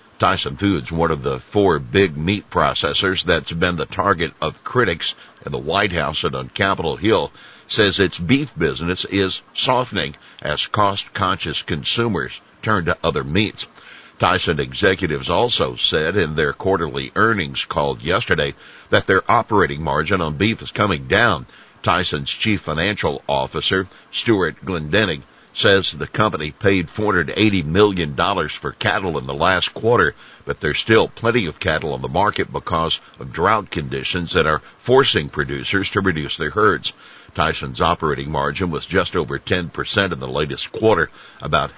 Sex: male